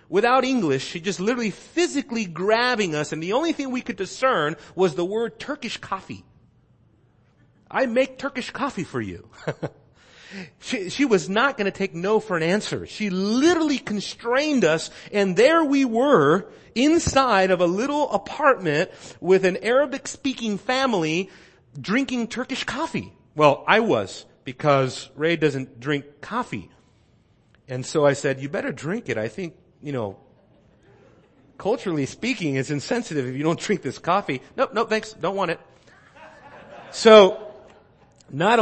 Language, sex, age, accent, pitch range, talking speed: English, male, 40-59, American, 140-220 Hz, 150 wpm